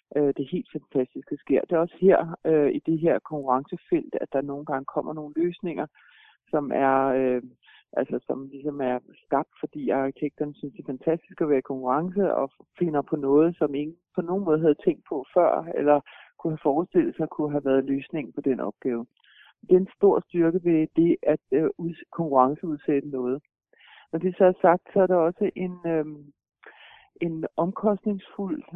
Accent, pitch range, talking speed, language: native, 150-180 Hz, 185 wpm, Danish